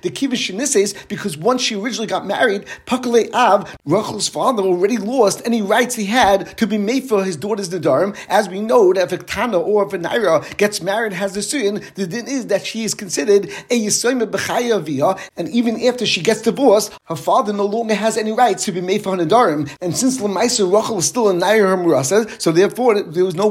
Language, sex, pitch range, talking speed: English, male, 185-230 Hz, 215 wpm